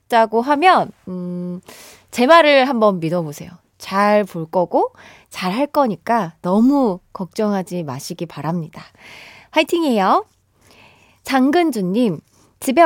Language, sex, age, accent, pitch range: Korean, female, 20-39, native, 200-315 Hz